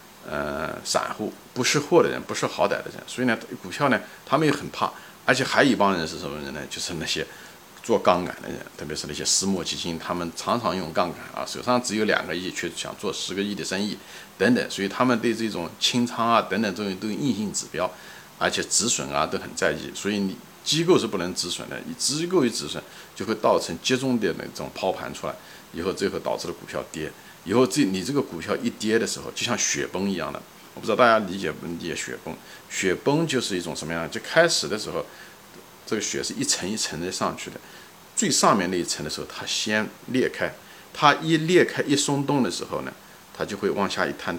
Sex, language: male, Chinese